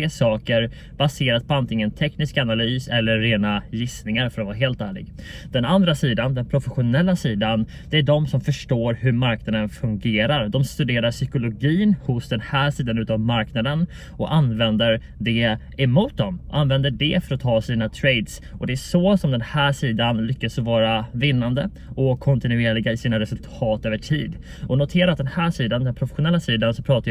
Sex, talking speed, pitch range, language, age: male, 175 wpm, 115-140 Hz, Swedish, 20-39